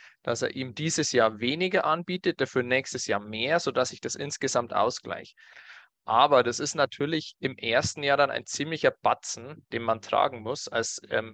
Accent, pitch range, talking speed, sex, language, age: German, 120-145 Hz, 175 wpm, male, German, 20-39